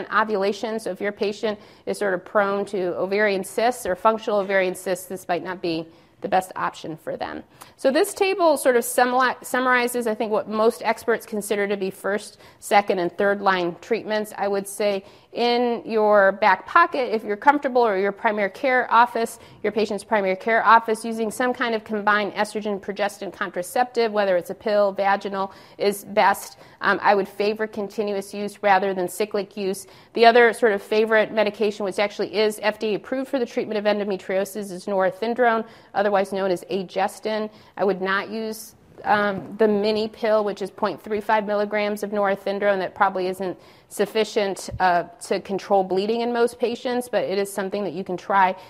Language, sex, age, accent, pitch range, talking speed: English, female, 40-59, American, 190-220 Hz, 175 wpm